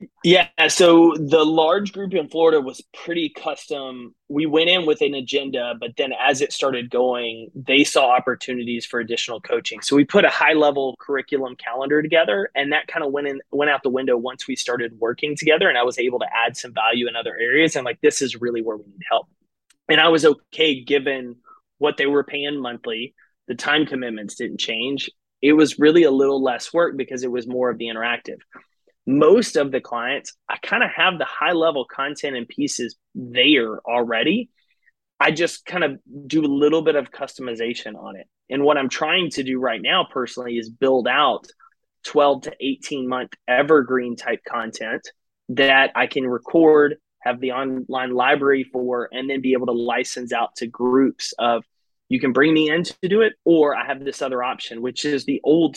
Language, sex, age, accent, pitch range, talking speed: English, male, 20-39, American, 125-155 Hz, 200 wpm